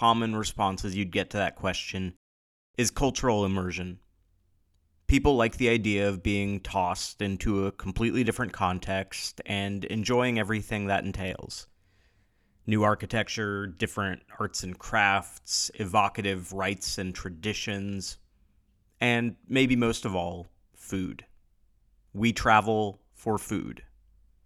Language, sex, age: English, male, 30-49